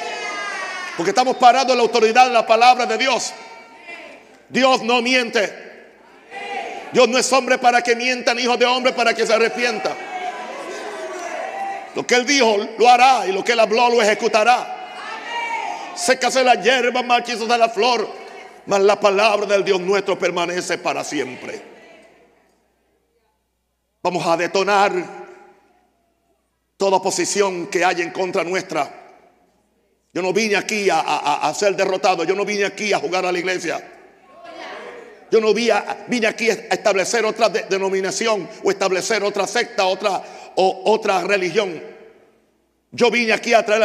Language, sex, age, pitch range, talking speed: Spanish, male, 60-79, 200-275 Hz, 150 wpm